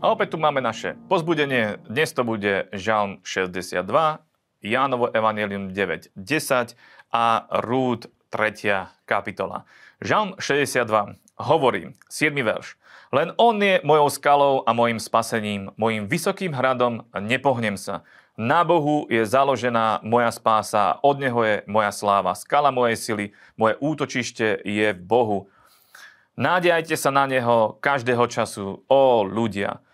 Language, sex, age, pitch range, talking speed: Slovak, male, 30-49, 105-135 Hz, 125 wpm